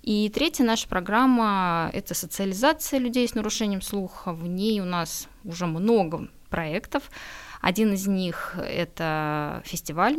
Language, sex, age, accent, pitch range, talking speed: Russian, female, 20-39, native, 170-220 Hz, 130 wpm